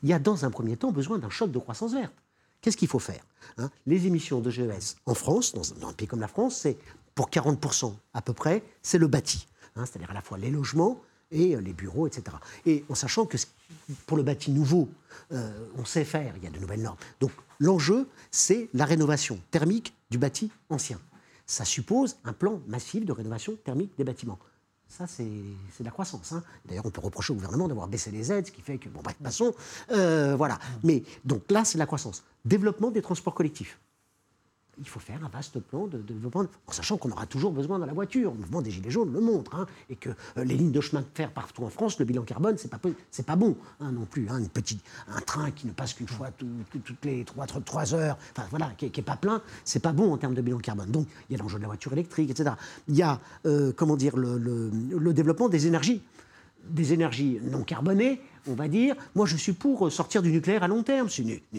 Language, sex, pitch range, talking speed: French, male, 120-170 Hz, 235 wpm